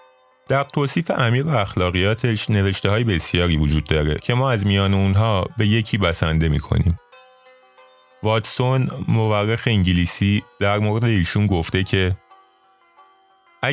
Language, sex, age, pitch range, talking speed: Persian, male, 30-49, 85-115 Hz, 115 wpm